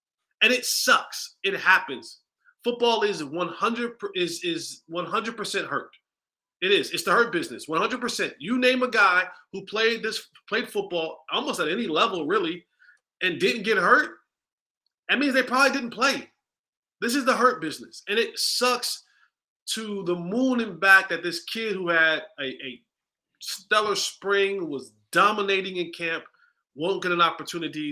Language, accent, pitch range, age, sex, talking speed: English, American, 190-280 Hz, 30-49, male, 170 wpm